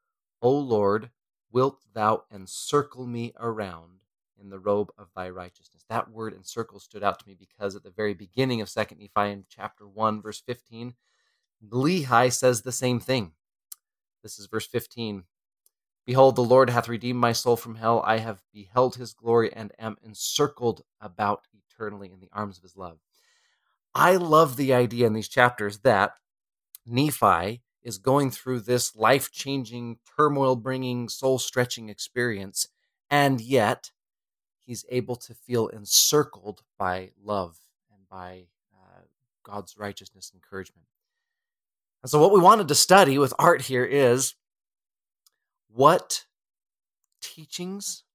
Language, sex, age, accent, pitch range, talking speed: English, male, 30-49, American, 105-130 Hz, 140 wpm